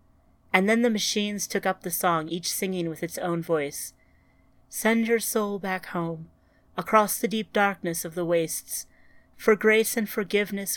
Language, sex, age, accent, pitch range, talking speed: English, female, 30-49, American, 160-205 Hz, 165 wpm